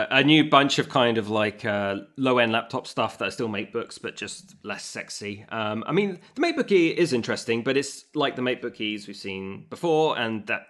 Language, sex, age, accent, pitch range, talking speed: English, male, 20-39, British, 105-140 Hz, 215 wpm